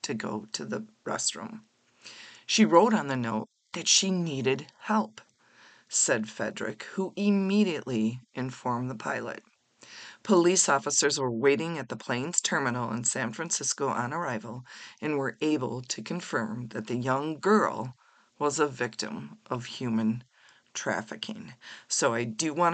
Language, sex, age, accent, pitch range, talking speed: English, female, 40-59, American, 125-160 Hz, 140 wpm